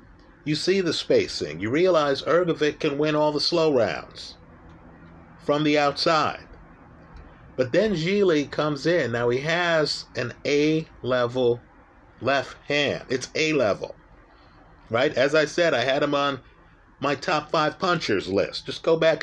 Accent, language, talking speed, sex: American, English, 145 wpm, male